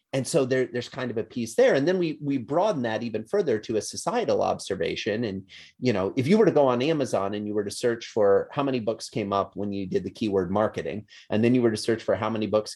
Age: 30-49